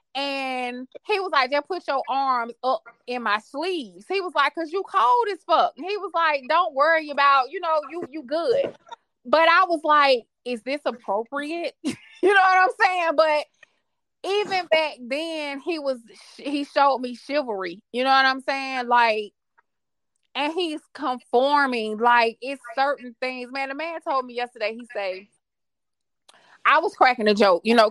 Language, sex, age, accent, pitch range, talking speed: English, female, 20-39, American, 235-315 Hz, 180 wpm